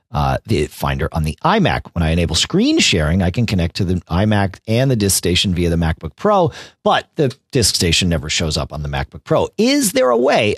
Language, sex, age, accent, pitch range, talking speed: English, male, 40-59, American, 90-145 Hz, 225 wpm